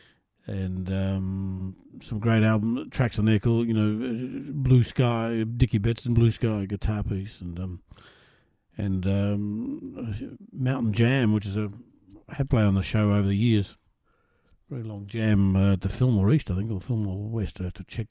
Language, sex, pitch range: English, male, 100-125 Hz